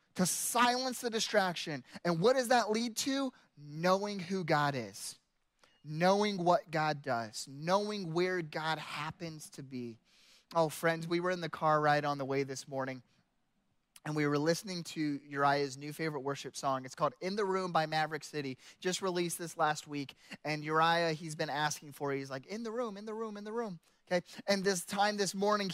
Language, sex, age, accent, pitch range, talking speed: English, male, 20-39, American, 165-225 Hz, 195 wpm